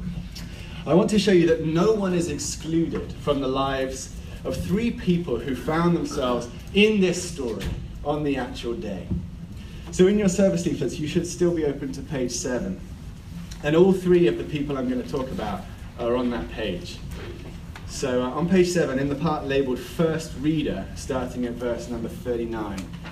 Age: 30-49